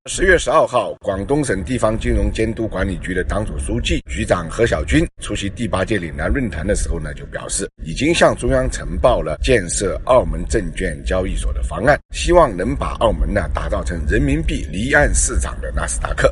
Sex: male